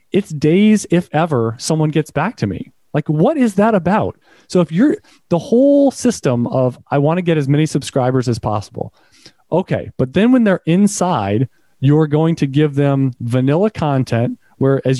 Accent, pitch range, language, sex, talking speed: American, 130-170 Hz, English, male, 180 wpm